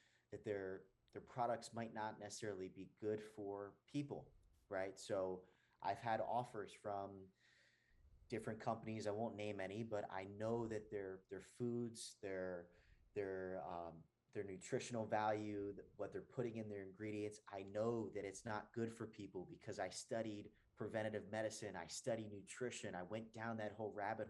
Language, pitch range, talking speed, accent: English, 105-125 Hz, 160 wpm, American